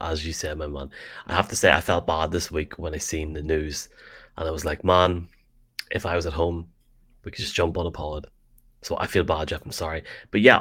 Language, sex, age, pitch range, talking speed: English, male, 30-49, 80-105 Hz, 255 wpm